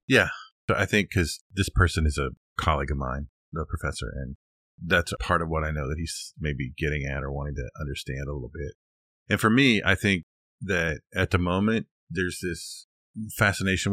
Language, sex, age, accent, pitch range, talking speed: English, male, 40-59, American, 75-95 Hz, 200 wpm